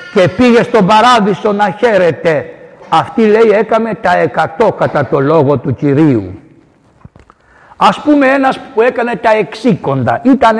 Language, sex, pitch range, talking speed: Greek, male, 195-255 Hz, 135 wpm